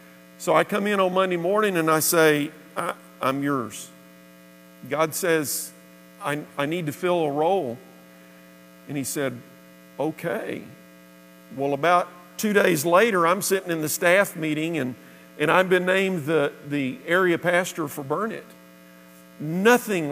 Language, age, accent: English, 50-69, American